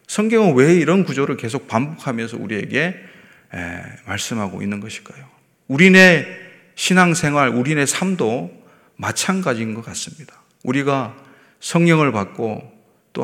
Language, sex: Korean, male